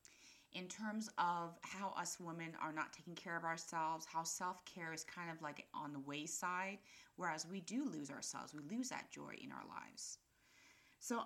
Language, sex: English, female